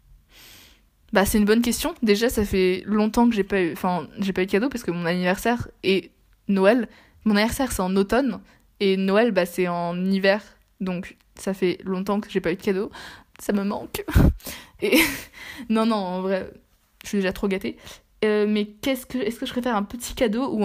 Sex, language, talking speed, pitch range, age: female, French, 205 wpm, 190-225 Hz, 20-39